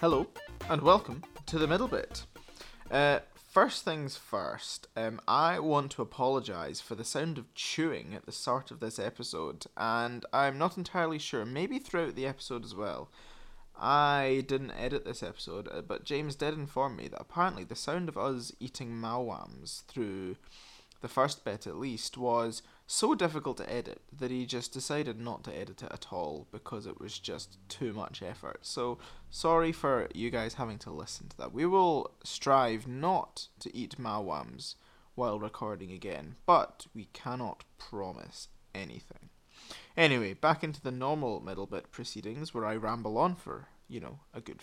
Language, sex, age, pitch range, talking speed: English, male, 20-39, 115-150 Hz, 170 wpm